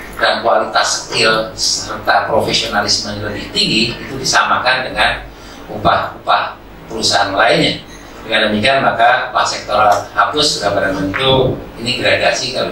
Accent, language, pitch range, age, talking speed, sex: native, Indonesian, 100-125 Hz, 40-59, 120 wpm, male